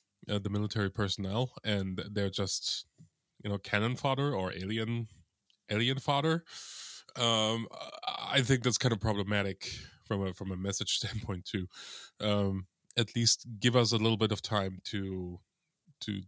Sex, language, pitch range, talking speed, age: male, English, 95-115 Hz, 150 wpm, 20-39